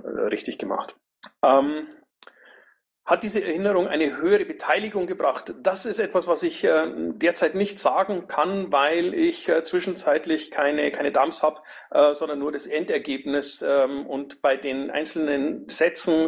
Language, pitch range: German, 140-185 Hz